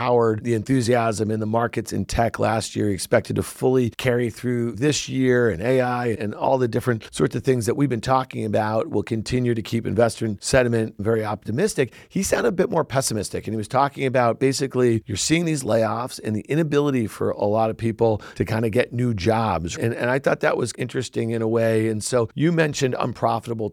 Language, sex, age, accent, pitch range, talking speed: English, male, 50-69, American, 115-135 Hz, 210 wpm